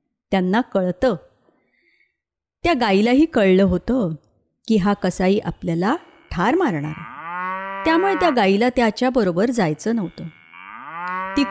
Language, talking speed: Marathi, 105 wpm